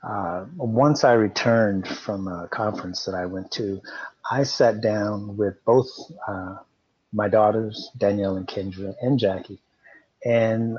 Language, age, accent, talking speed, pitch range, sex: English, 30-49, American, 140 wpm, 100-120 Hz, male